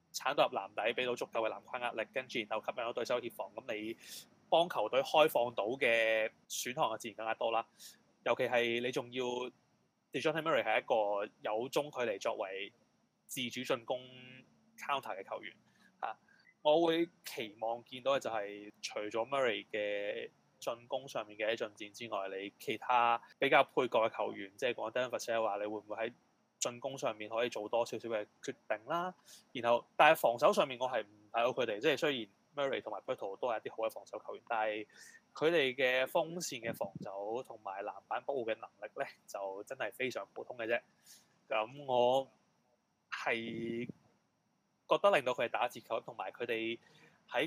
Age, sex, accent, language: 20-39, male, native, Chinese